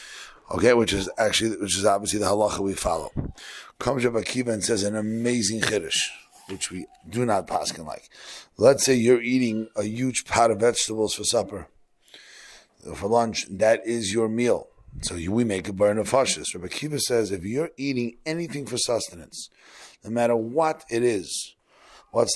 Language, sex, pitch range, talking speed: English, male, 110-135 Hz, 175 wpm